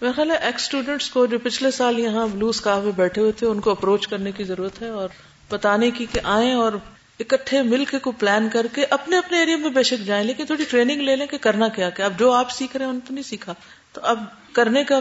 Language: Urdu